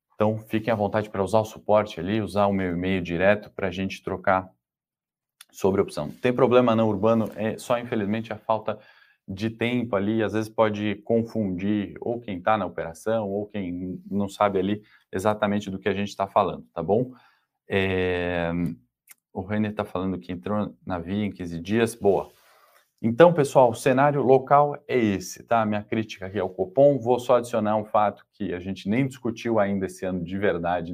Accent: Brazilian